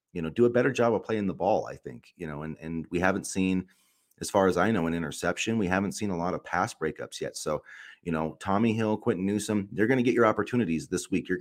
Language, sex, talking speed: English, male, 270 wpm